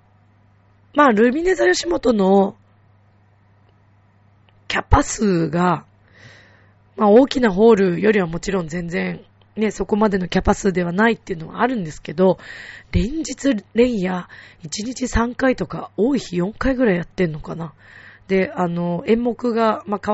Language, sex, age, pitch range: Japanese, female, 20-39, 165-215 Hz